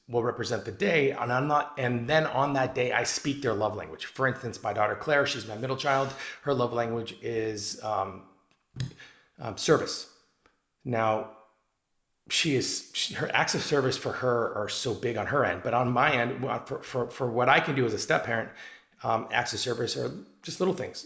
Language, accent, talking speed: English, American, 205 wpm